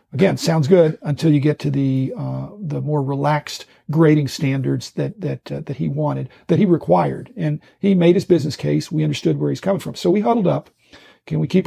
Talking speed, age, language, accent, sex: 215 wpm, 50-69, English, American, male